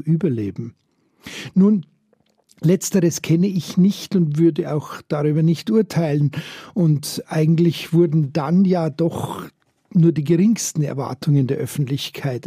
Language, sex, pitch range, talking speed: German, male, 150-185 Hz, 115 wpm